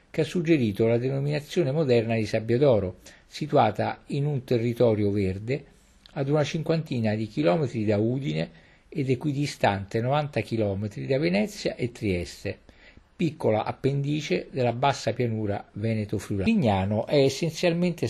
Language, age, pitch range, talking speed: Italian, 50-69, 105-140 Hz, 125 wpm